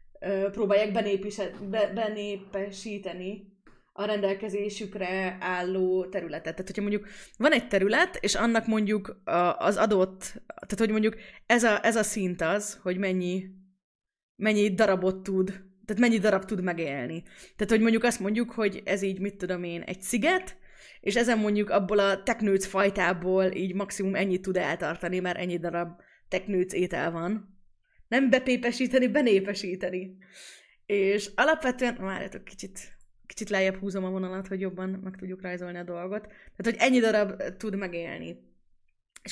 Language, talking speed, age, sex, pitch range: Hungarian, 145 wpm, 20-39, female, 185-215 Hz